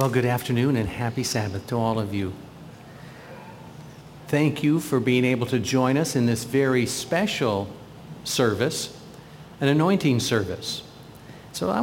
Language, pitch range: English, 115-145 Hz